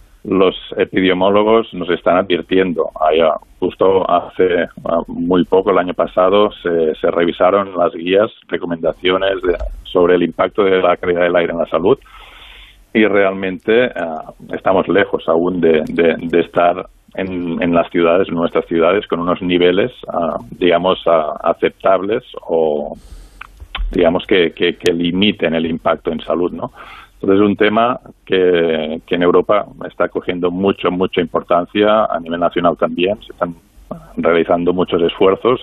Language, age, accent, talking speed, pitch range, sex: Spanish, 50-69, Spanish, 135 wpm, 85-105 Hz, male